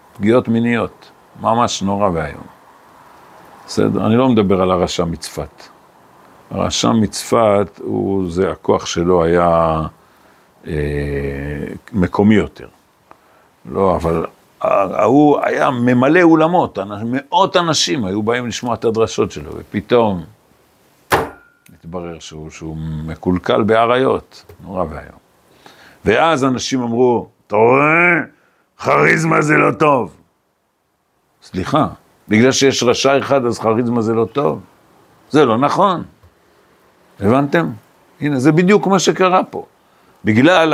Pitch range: 95-130 Hz